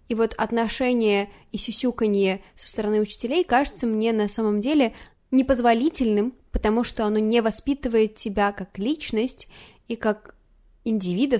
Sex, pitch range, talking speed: female, 205-245 Hz, 130 wpm